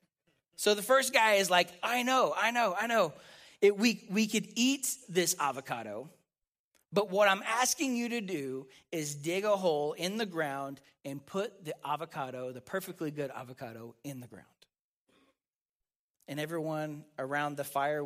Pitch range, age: 155-210 Hz, 40-59